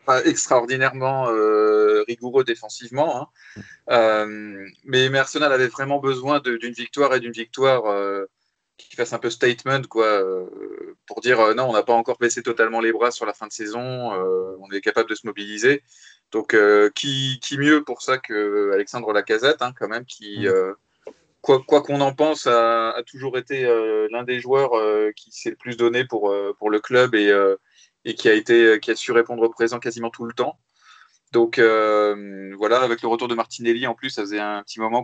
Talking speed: 205 wpm